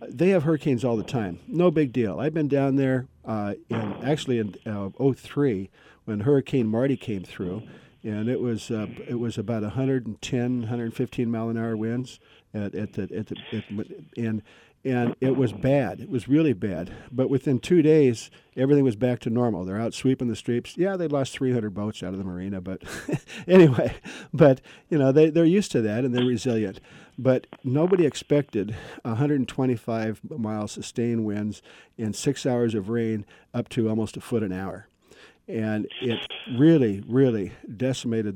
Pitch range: 110-135 Hz